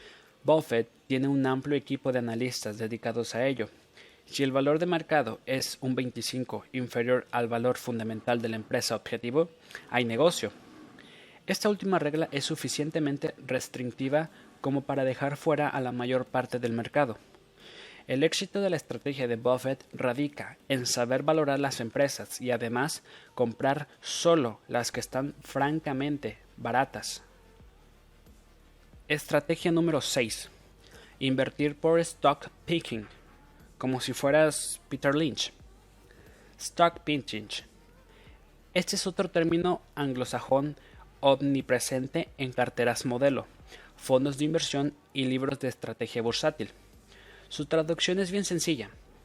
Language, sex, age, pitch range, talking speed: Spanish, male, 30-49, 120-150 Hz, 125 wpm